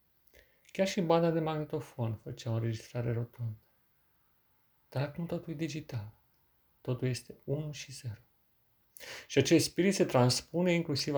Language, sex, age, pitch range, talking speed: Romanian, male, 40-59, 115-145 Hz, 135 wpm